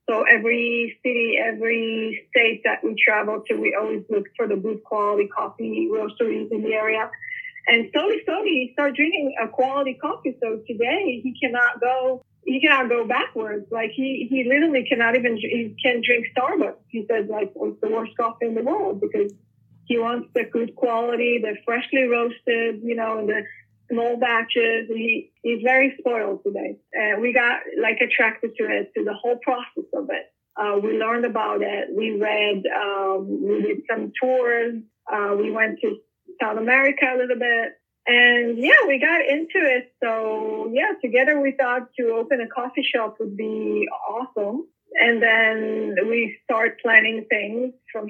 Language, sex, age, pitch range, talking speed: English, female, 30-49, 220-255 Hz, 175 wpm